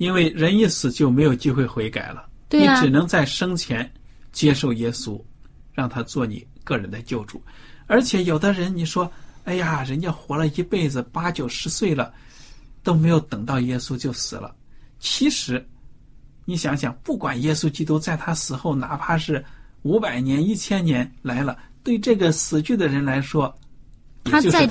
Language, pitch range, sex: Chinese, 120-155 Hz, male